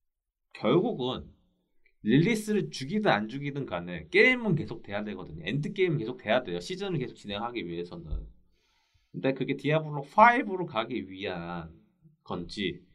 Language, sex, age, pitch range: Korean, male, 30-49, 105-165 Hz